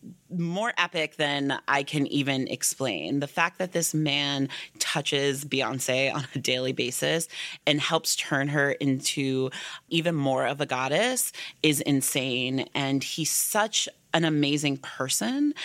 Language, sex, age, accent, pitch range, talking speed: English, female, 30-49, American, 135-160 Hz, 140 wpm